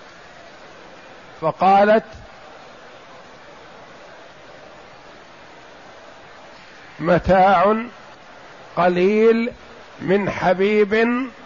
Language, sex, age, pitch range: Arabic, male, 50-69, 165-205 Hz